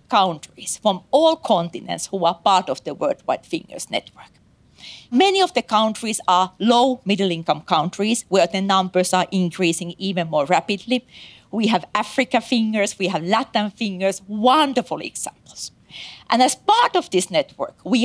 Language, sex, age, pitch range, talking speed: English, female, 40-59, 185-265 Hz, 150 wpm